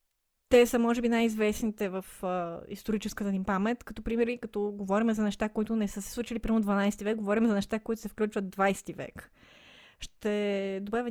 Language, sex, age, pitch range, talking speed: Bulgarian, female, 20-39, 210-240 Hz, 185 wpm